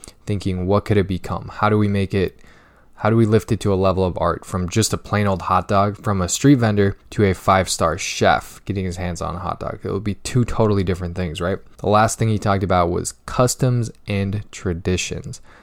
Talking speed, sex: 235 wpm, male